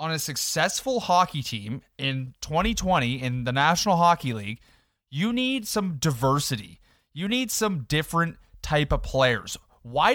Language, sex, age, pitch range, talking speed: English, male, 20-39, 130-205 Hz, 140 wpm